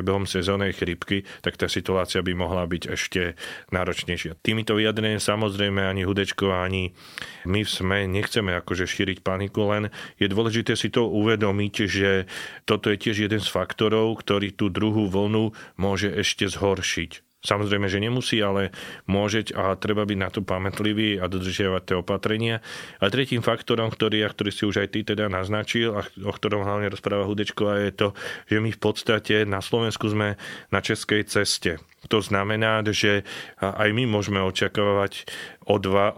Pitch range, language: 95-105 Hz, Slovak